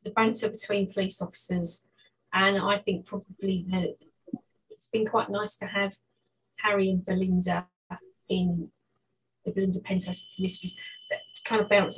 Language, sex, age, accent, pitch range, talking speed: English, female, 30-49, British, 170-210 Hz, 140 wpm